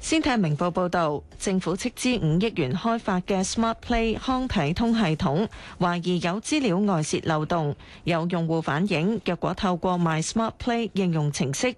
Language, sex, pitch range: Chinese, female, 160-220 Hz